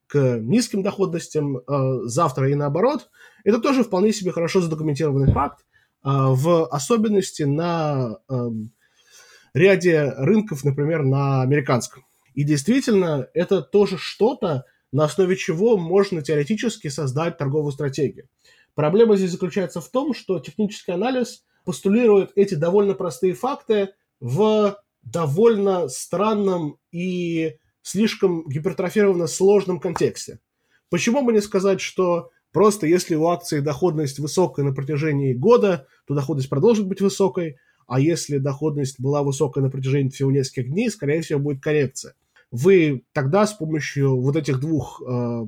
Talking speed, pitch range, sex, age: 135 wpm, 140-195 Hz, male, 20-39